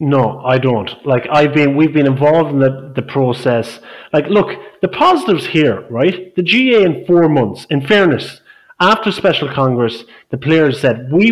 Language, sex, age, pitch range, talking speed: English, male, 30-49, 130-180 Hz, 175 wpm